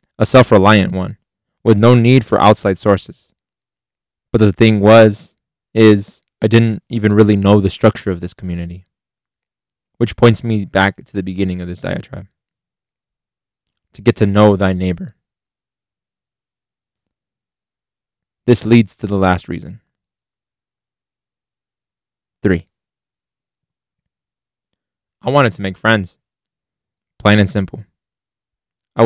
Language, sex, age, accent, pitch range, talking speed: English, male, 20-39, American, 95-115 Hz, 115 wpm